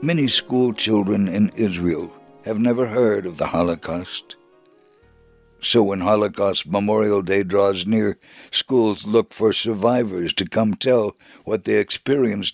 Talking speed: 135 wpm